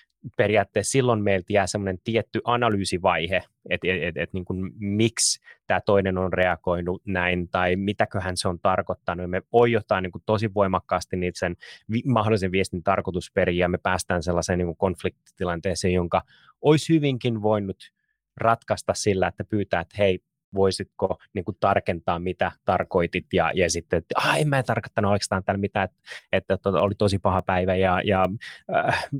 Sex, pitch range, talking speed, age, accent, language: male, 95-110 Hz, 160 wpm, 20-39, native, Finnish